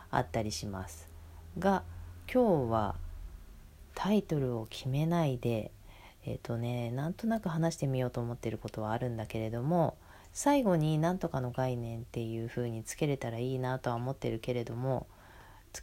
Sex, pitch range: female, 105-145 Hz